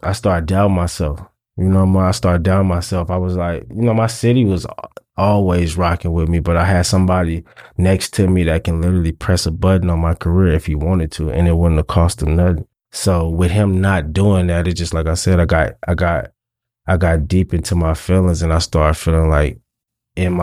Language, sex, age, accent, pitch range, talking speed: English, male, 20-39, American, 80-95 Hz, 225 wpm